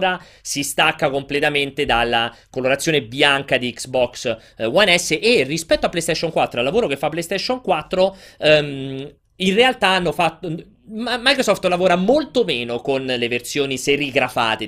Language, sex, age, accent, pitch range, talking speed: Italian, male, 30-49, native, 120-160 Hz, 135 wpm